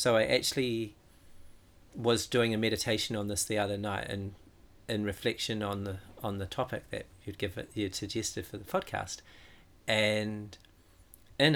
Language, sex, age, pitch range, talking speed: English, male, 40-59, 95-115 Hz, 160 wpm